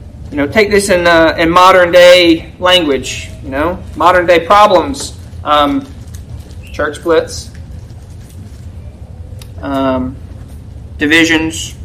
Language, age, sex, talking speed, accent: English, 30-49, male, 100 wpm, American